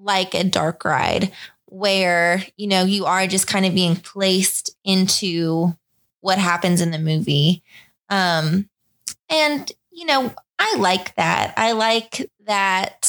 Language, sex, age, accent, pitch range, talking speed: English, female, 20-39, American, 180-210 Hz, 140 wpm